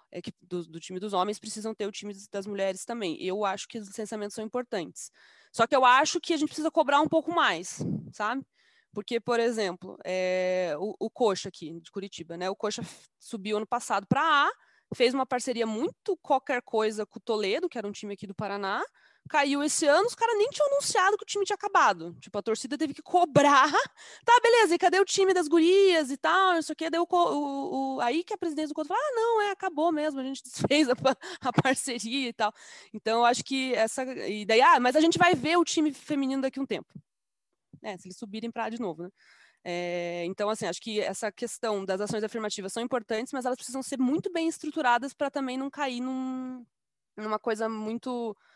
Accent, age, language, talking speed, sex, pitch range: Brazilian, 20-39, Portuguese, 220 wpm, female, 210-310 Hz